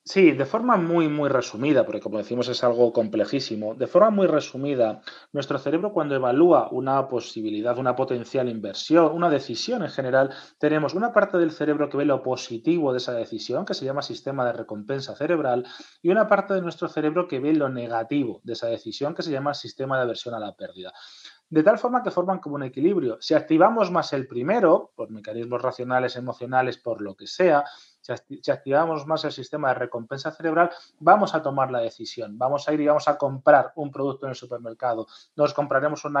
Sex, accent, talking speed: male, Spanish, 195 wpm